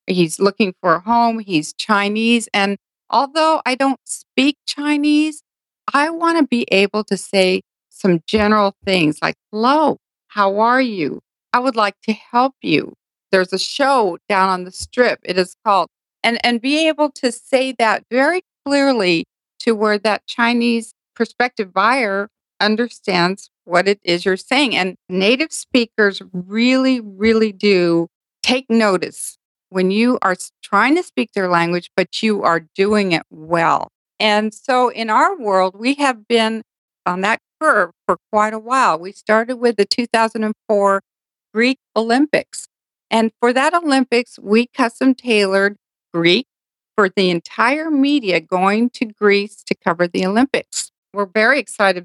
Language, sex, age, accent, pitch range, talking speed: English, female, 50-69, American, 195-255 Hz, 150 wpm